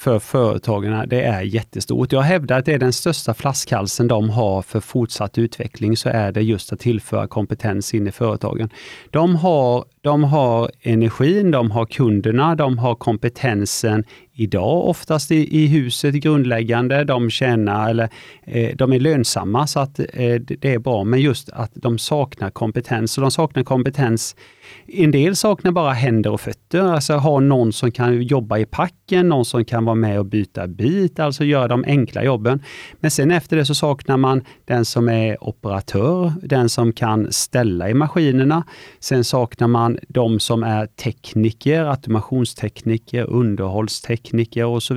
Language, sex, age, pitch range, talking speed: Swedish, male, 30-49, 115-145 Hz, 165 wpm